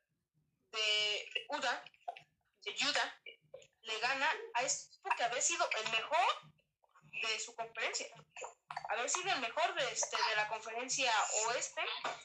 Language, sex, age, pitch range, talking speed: Spanish, female, 20-39, 225-295 Hz, 130 wpm